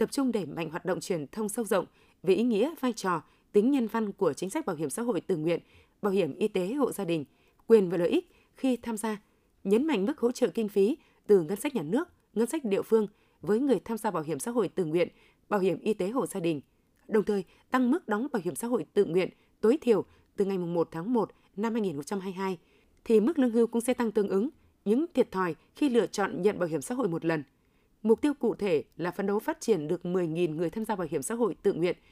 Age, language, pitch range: 20-39, Vietnamese, 180-230 Hz